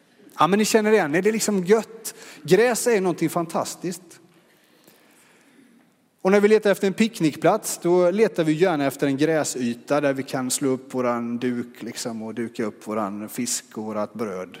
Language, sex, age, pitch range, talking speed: Swedish, male, 30-49, 135-180 Hz, 175 wpm